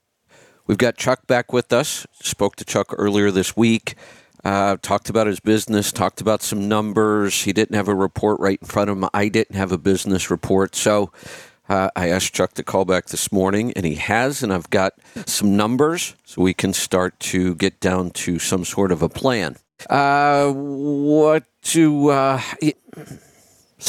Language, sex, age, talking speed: English, male, 50-69, 180 wpm